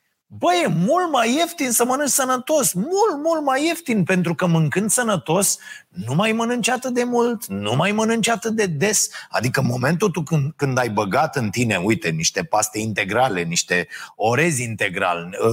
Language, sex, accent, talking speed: Romanian, male, native, 175 wpm